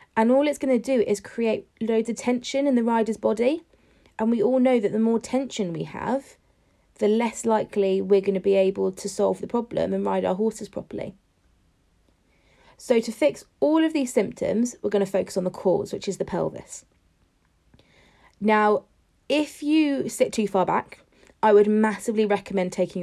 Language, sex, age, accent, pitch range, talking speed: English, female, 20-39, British, 200-245 Hz, 190 wpm